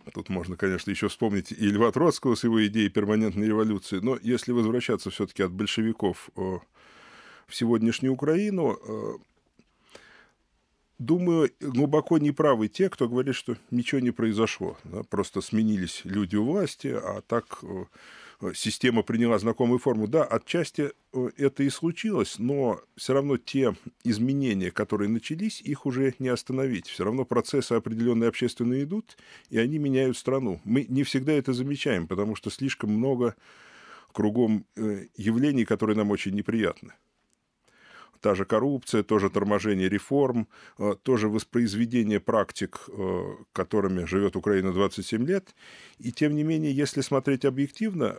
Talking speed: 135 wpm